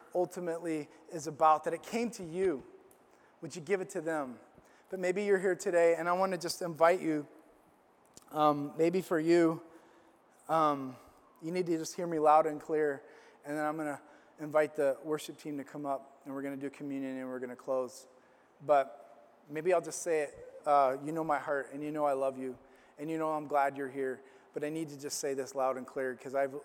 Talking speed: 225 wpm